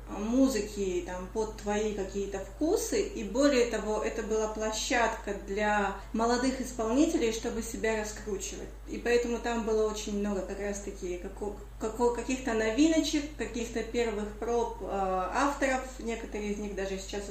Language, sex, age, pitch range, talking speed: Russian, female, 30-49, 205-280 Hz, 140 wpm